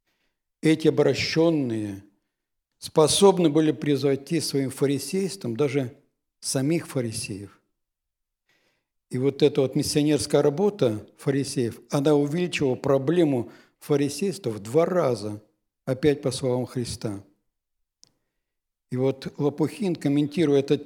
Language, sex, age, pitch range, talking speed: Russian, male, 60-79, 120-150 Hz, 95 wpm